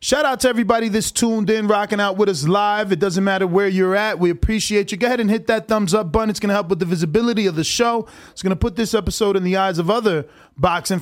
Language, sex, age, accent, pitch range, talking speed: English, male, 20-39, American, 180-220 Hz, 265 wpm